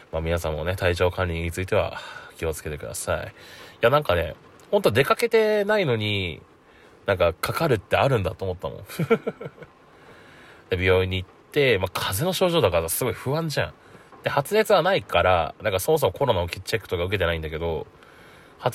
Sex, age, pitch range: male, 20-39, 85-120 Hz